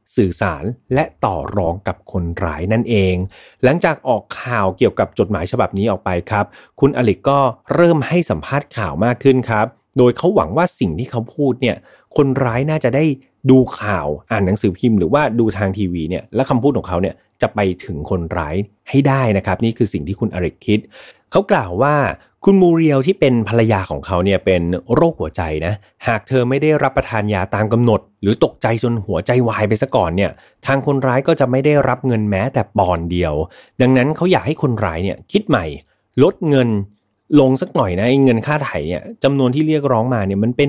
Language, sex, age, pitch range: Thai, male, 30-49, 95-135 Hz